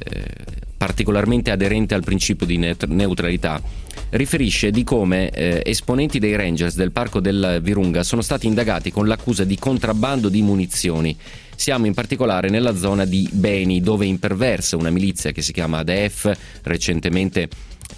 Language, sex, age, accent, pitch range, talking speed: Italian, male, 30-49, native, 85-105 Hz, 140 wpm